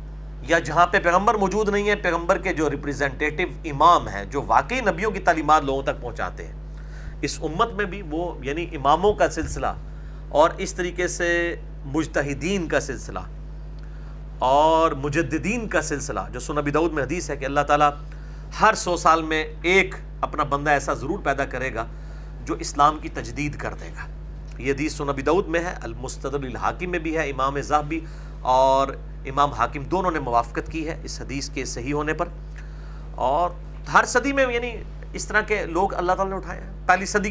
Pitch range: 140-170 Hz